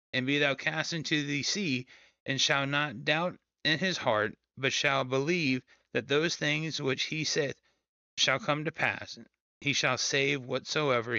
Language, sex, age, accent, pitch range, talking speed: English, male, 30-49, American, 125-155 Hz, 165 wpm